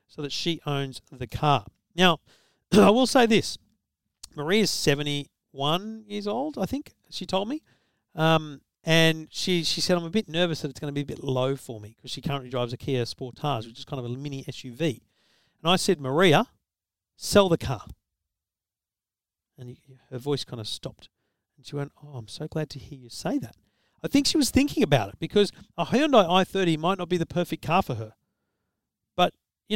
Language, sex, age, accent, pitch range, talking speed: English, male, 40-59, Australian, 125-180 Hz, 200 wpm